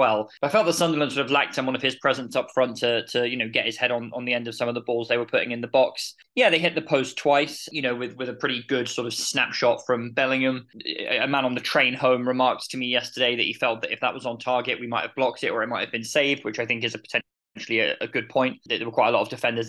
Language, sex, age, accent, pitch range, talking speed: English, male, 20-39, British, 115-135 Hz, 315 wpm